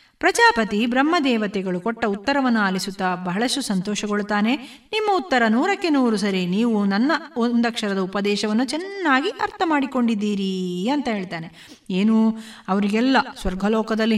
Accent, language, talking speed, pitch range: native, Kannada, 100 wpm, 210-280 Hz